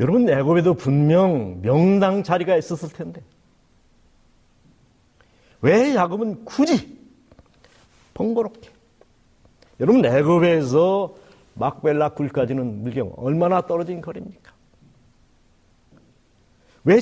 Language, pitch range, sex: Korean, 155-235 Hz, male